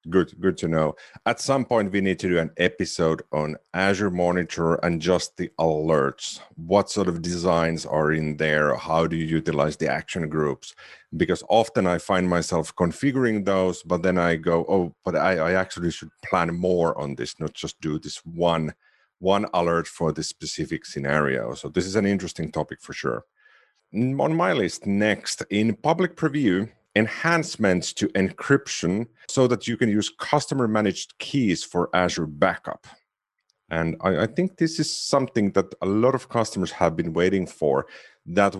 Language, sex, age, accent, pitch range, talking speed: English, male, 40-59, Finnish, 85-105 Hz, 175 wpm